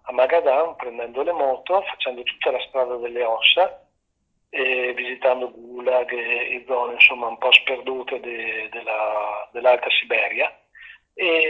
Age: 40-59